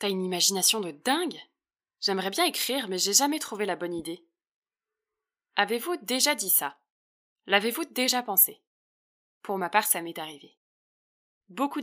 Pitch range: 180-230 Hz